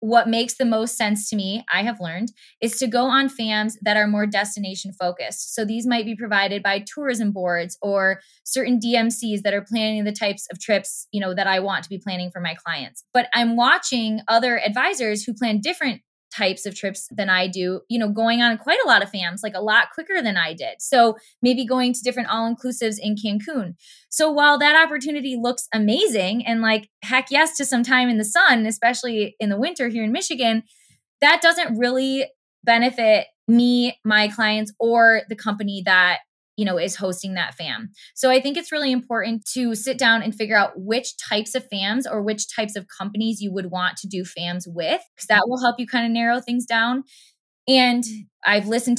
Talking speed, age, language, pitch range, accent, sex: 205 wpm, 20-39, English, 195-245 Hz, American, female